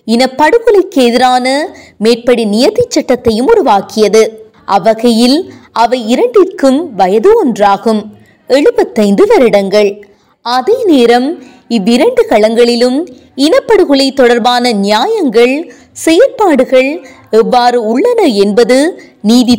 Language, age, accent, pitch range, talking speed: Tamil, 20-39, native, 225-310 Hz, 45 wpm